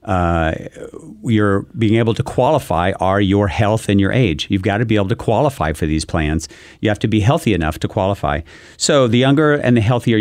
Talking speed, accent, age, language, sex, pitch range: 210 wpm, American, 50-69, English, male, 90-115 Hz